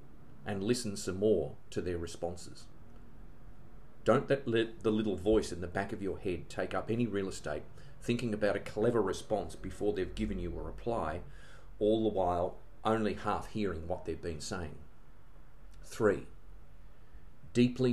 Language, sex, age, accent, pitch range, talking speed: English, male, 40-59, Australian, 90-110 Hz, 155 wpm